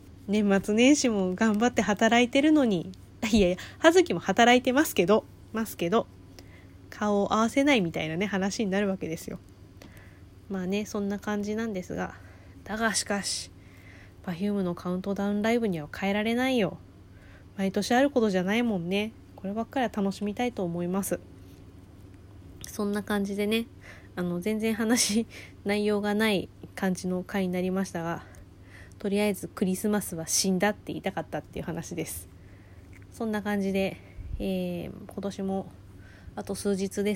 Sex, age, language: female, 20-39, Japanese